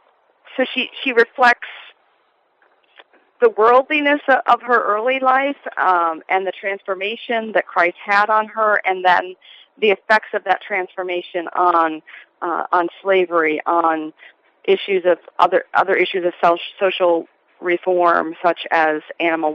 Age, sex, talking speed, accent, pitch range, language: 40-59, female, 130 wpm, American, 170-210 Hz, English